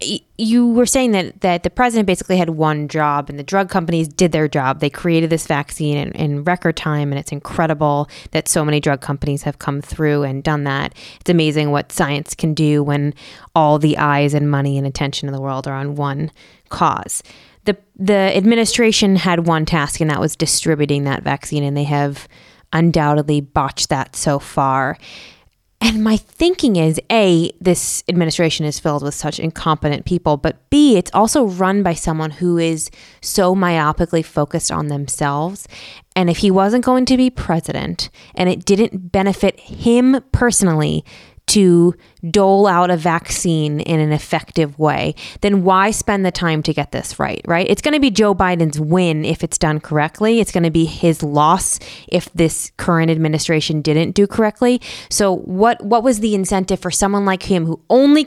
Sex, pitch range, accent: female, 150-195 Hz, American